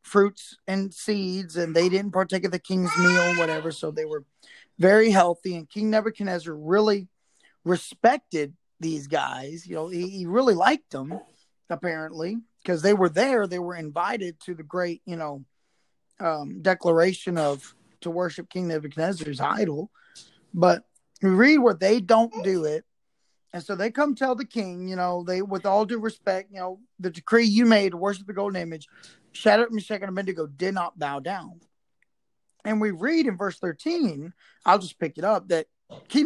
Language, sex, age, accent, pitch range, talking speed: English, male, 20-39, American, 175-215 Hz, 175 wpm